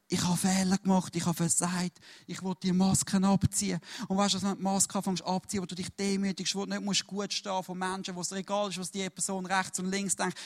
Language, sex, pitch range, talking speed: English, male, 190-210 Hz, 250 wpm